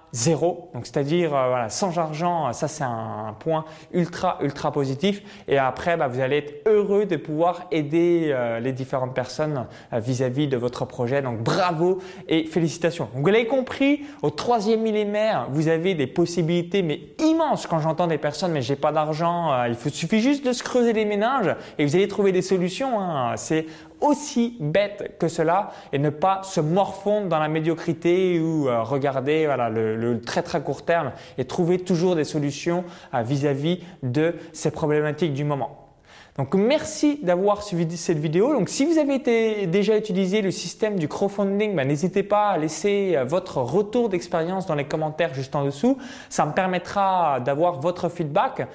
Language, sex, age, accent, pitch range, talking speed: French, male, 20-39, French, 145-195 Hz, 180 wpm